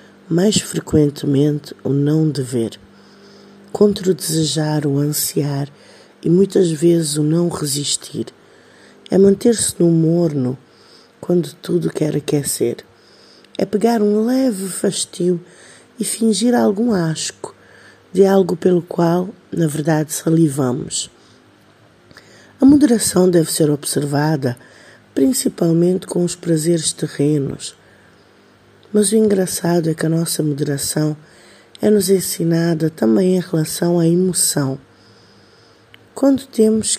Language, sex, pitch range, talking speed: Portuguese, female, 145-190 Hz, 110 wpm